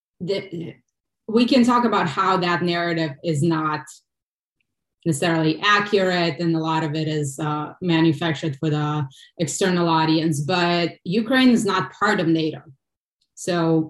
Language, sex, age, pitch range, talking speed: English, female, 20-39, 160-185 Hz, 135 wpm